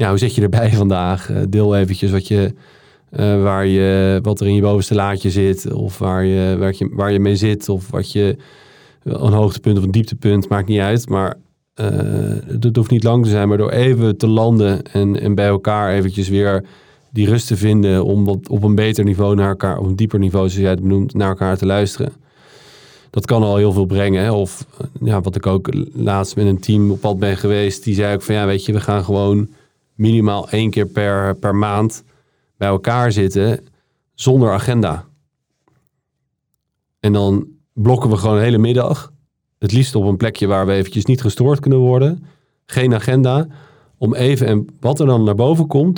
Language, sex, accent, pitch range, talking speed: Dutch, male, Dutch, 100-125 Hz, 195 wpm